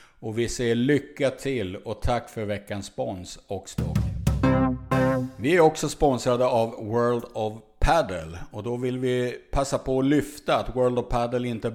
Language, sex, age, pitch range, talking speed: Swedish, male, 50-69, 100-125 Hz, 160 wpm